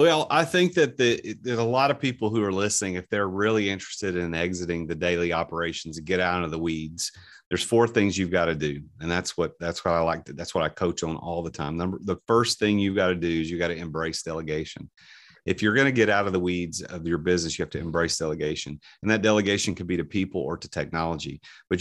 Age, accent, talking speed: 40-59, American, 255 wpm